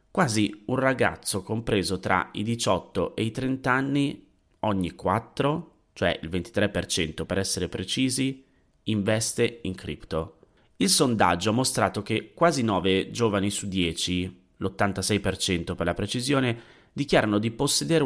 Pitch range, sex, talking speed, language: 95-125 Hz, male, 130 wpm, Italian